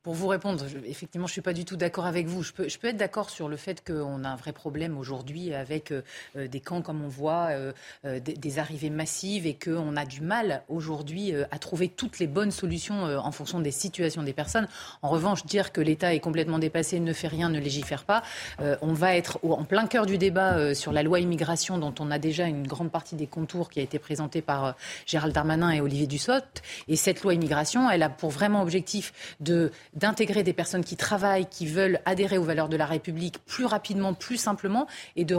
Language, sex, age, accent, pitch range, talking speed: French, female, 30-49, French, 155-200 Hz, 235 wpm